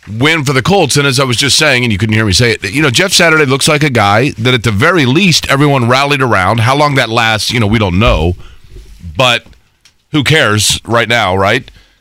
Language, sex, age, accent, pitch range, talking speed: English, male, 40-59, American, 110-150 Hz, 240 wpm